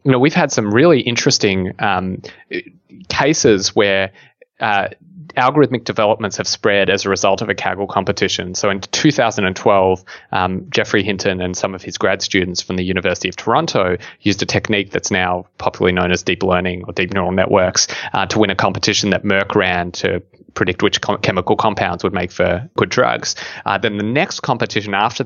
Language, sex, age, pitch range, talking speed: English, male, 20-39, 90-110 Hz, 185 wpm